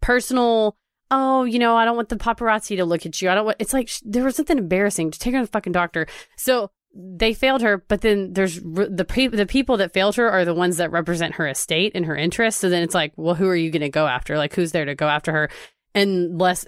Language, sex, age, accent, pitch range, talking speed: English, female, 30-49, American, 170-215 Hz, 275 wpm